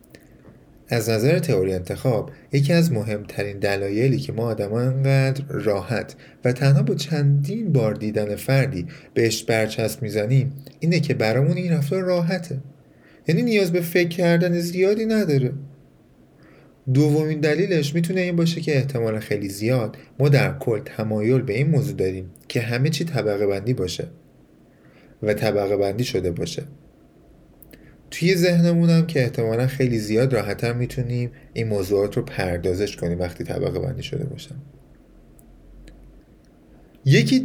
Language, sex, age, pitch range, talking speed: Persian, male, 30-49, 105-145 Hz, 130 wpm